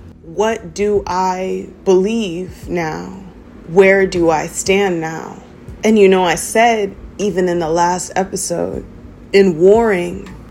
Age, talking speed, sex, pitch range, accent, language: 30-49, 125 wpm, female, 175-205 Hz, American, English